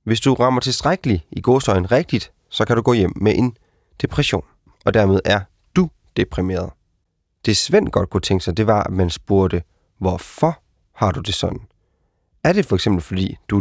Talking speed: 185 wpm